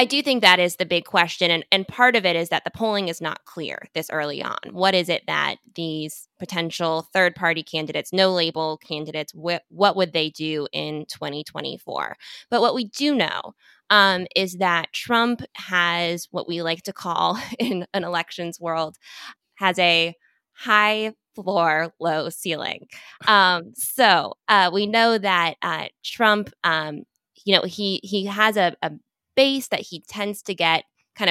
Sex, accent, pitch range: female, American, 165-210 Hz